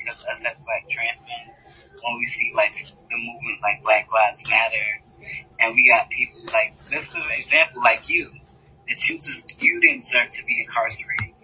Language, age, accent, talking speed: English, 20-39, American, 190 wpm